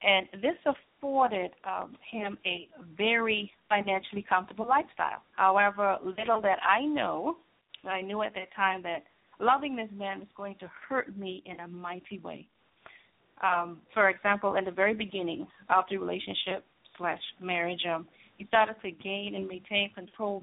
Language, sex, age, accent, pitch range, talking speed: English, female, 30-49, American, 180-210 Hz, 155 wpm